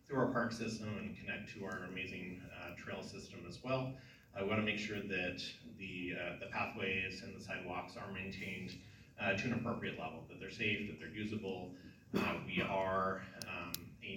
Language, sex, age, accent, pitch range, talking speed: English, male, 30-49, American, 95-115 Hz, 185 wpm